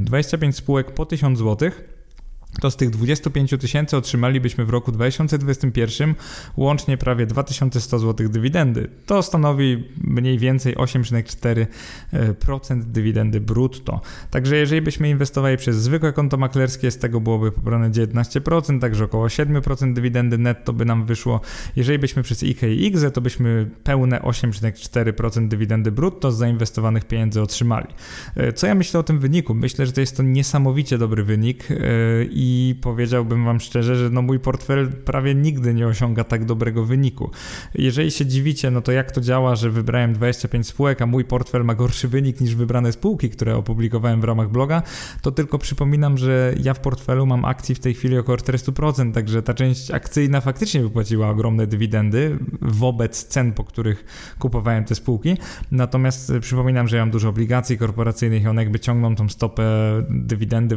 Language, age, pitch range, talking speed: Polish, 20-39, 115-135 Hz, 160 wpm